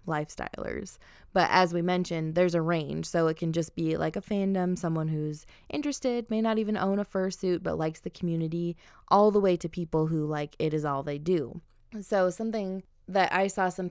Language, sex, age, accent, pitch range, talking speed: English, female, 20-39, American, 160-180 Hz, 205 wpm